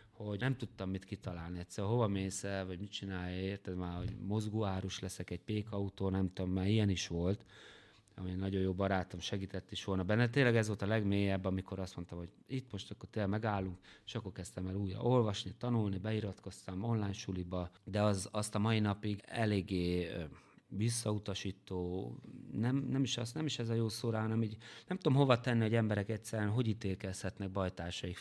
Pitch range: 95-110 Hz